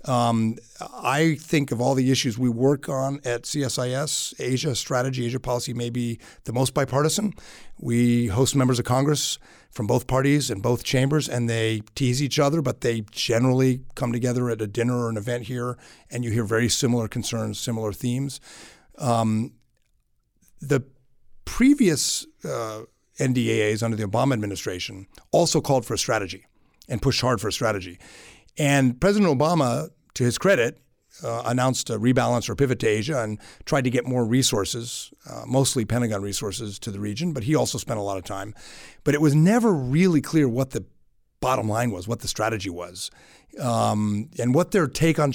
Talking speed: 175 wpm